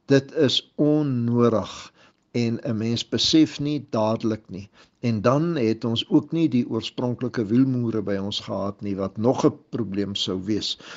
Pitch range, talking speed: 105-125 Hz, 160 wpm